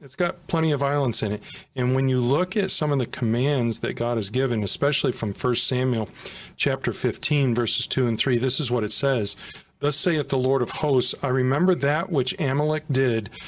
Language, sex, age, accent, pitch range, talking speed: English, male, 40-59, American, 125-155 Hz, 210 wpm